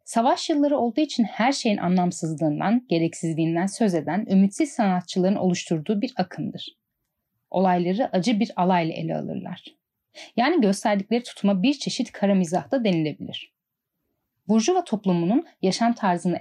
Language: Turkish